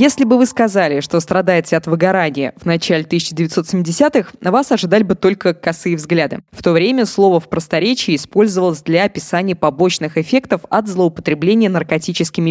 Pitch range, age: 170-235 Hz, 20-39